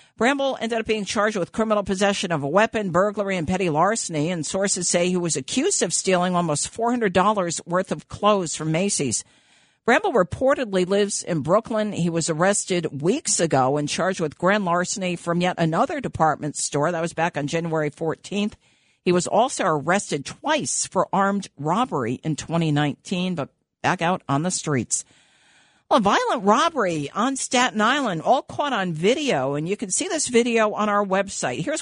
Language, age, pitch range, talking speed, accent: English, 50-69, 160-210 Hz, 175 wpm, American